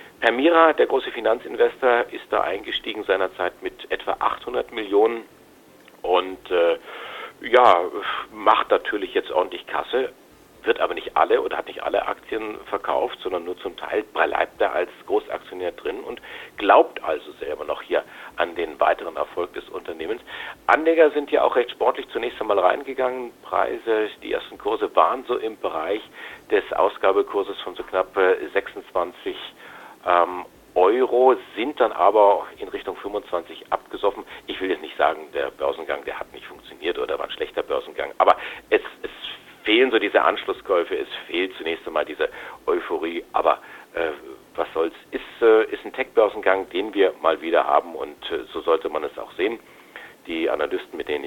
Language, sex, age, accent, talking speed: German, male, 50-69, German, 160 wpm